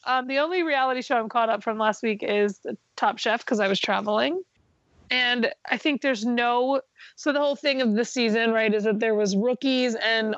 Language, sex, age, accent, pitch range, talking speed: English, female, 30-49, American, 215-270 Hz, 215 wpm